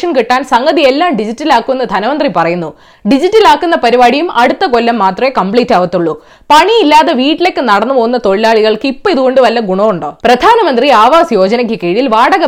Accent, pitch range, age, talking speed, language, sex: native, 215-330 Hz, 20-39, 140 wpm, Malayalam, female